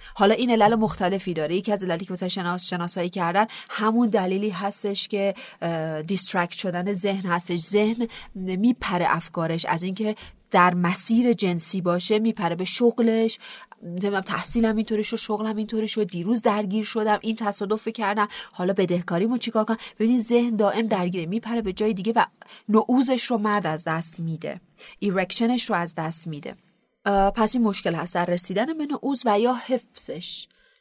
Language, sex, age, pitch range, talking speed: Persian, female, 30-49, 180-225 Hz, 170 wpm